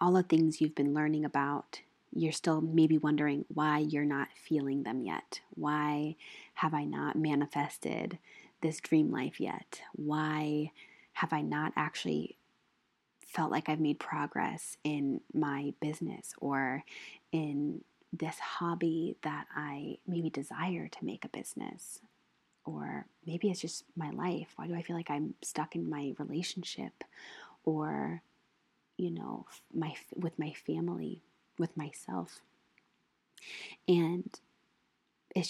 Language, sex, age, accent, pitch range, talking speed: English, female, 20-39, American, 150-170 Hz, 130 wpm